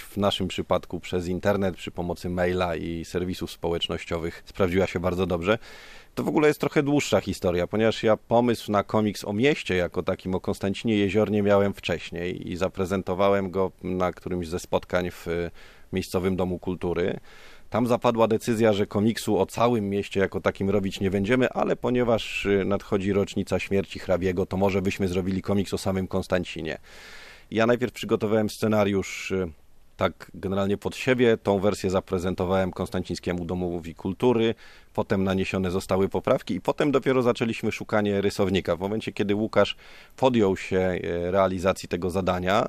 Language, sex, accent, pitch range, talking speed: Polish, male, native, 90-105 Hz, 150 wpm